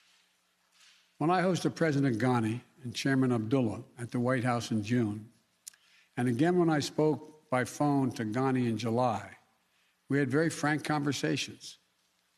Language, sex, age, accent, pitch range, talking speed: English, male, 60-79, American, 125-165 Hz, 145 wpm